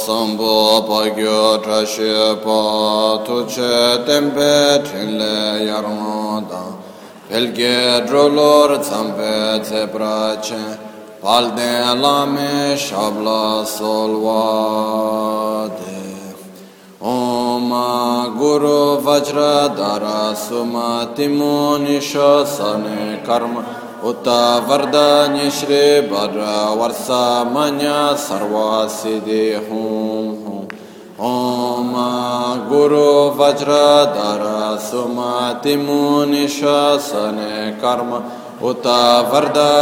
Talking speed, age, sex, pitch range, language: 35 wpm, 20-39, male, 110-145 Hz, Italian